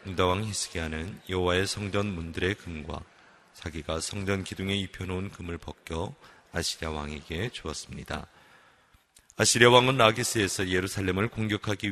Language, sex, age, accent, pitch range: Korean, male, 30-49, native, 85-105 Hz